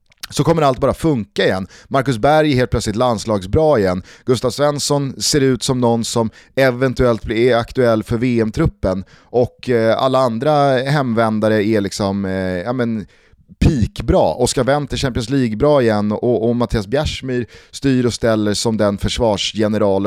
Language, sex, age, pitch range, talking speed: Swedish, male, 30-49, 105-135 Hz, 150 wpm